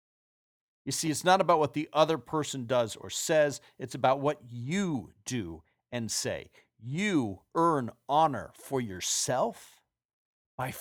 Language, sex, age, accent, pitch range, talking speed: English, male, 40-59, American, 125-165 Hz, 140 wpm